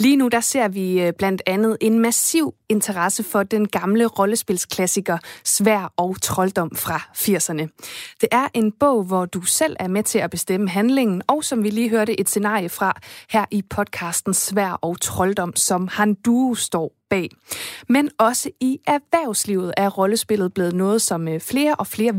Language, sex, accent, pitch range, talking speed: Danish, female, native, 185-230 Hz, 170 wpm